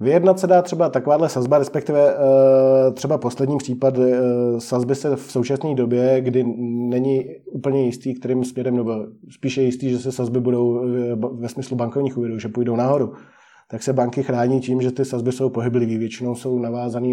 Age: 20-39